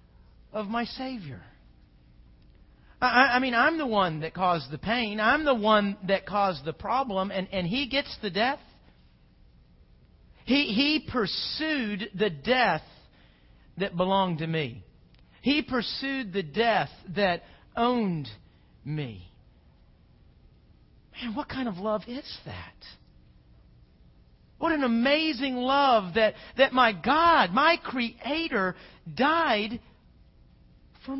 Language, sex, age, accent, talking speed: English, male, 40-59, American, 115 wpm